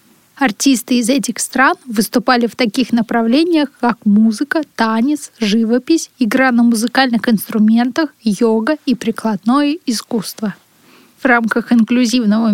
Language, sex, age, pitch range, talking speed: Russian, female, 20-39, 220-260 Hz, 110 wpm